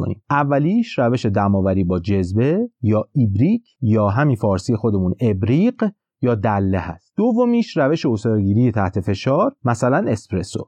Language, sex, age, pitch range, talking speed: Persian, male, 30-49, 100-145 Hz, 125 wpm